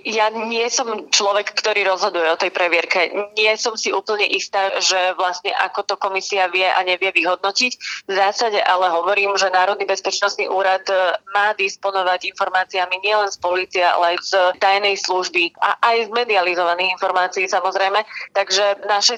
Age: 20-39